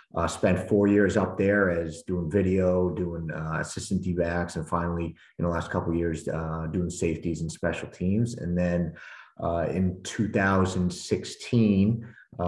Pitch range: 85-95 Hz